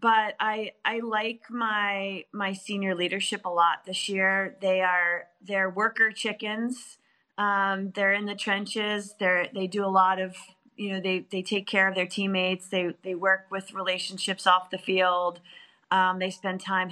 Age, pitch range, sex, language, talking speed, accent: 30-49, 180-205 Hz, female, English, 175 wpm, American